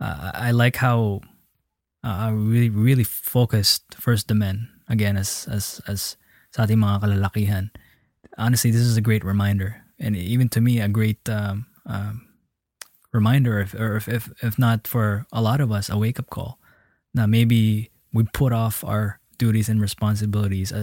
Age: 20-39